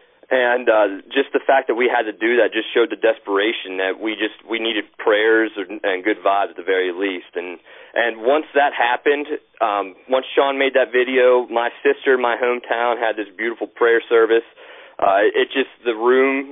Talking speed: 195 wpm